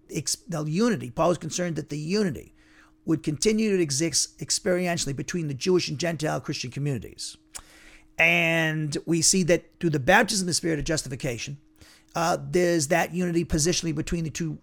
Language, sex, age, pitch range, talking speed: English, male, 50-69, 140-175 Hz, 165 wpm